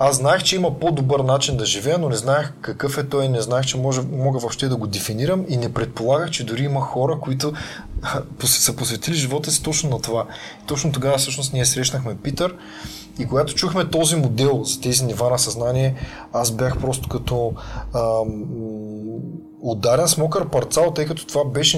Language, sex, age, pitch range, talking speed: Bulgarian, male, 20-39, 115-150 Hz, 190 wpm